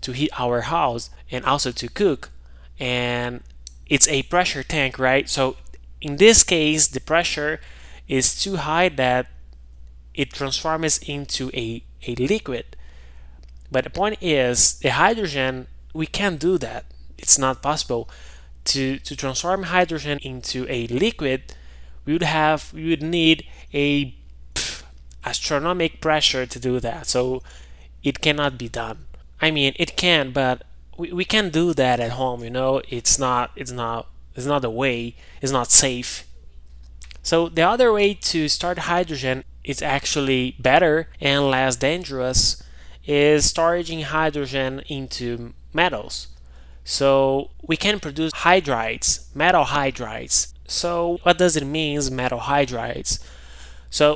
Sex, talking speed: male, 140 wpm